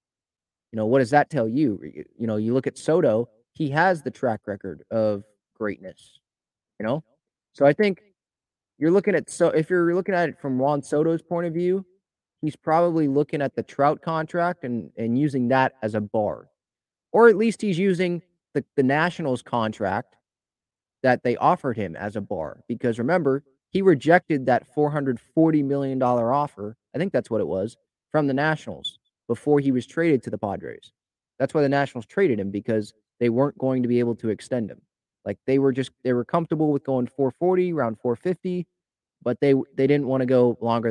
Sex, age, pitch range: male, 30-49, 115-155 Hz